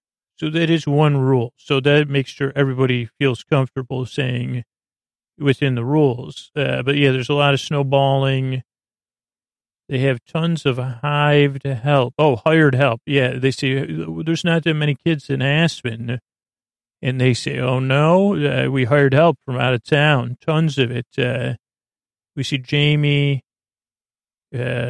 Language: English